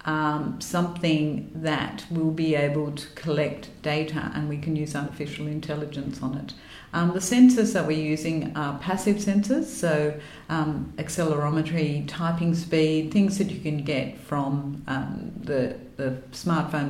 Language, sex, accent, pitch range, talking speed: English, female, Australian, 135-170 Hz, 145 wpm